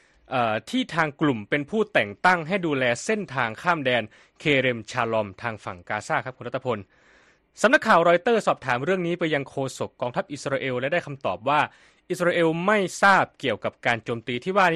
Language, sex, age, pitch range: Thai, male, 20-39, 125-180 Hz